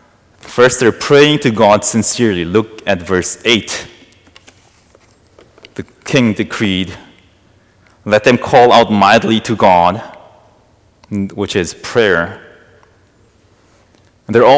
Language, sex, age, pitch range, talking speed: English, male, 30-49, 100-115 Hz, 100 wpm